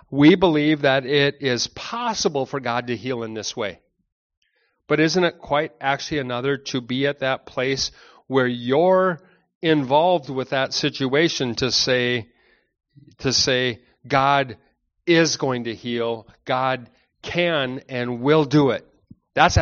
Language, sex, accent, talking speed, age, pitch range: English, male, American, 140 wpm, 40-59, 130-155 Hz